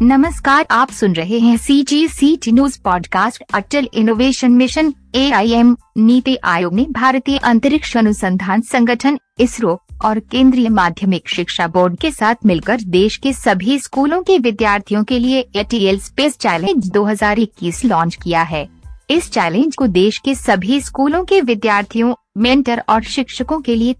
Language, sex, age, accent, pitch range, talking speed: Hindi, female, 50-69, native, 200-265 Hz, 155 wpm